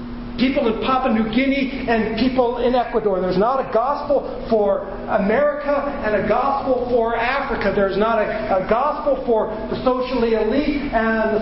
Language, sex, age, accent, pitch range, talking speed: English, male, 40-59, American, 180-245 Hz, 165 wpm